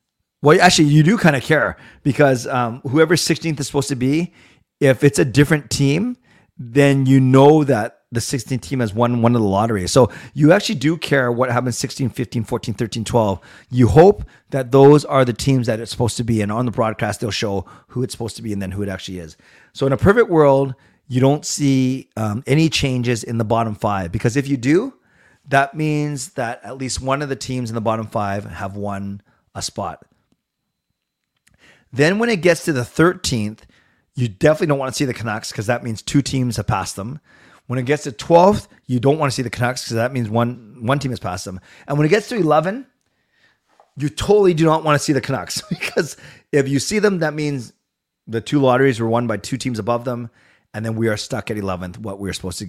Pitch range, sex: 115-145 Hz, male